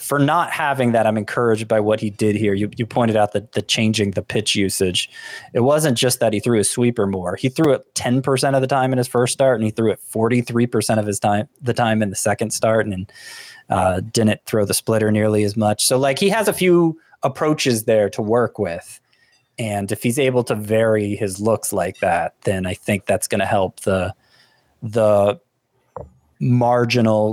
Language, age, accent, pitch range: English, 20-39, American, 105-130 Hz